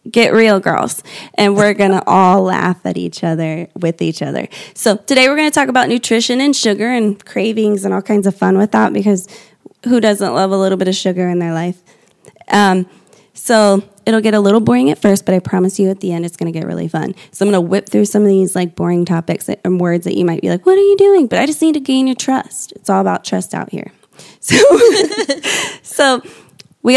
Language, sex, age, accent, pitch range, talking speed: English, female, 20-39, American, 185-240 Hz, 240 wpm